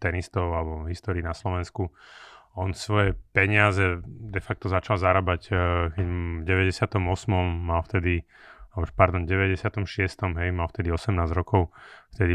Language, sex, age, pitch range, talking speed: Slovak, male, 30-49, 90-105 Hz, 120 wpm